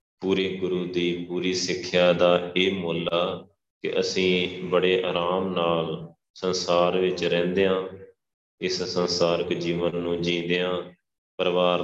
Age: 20-39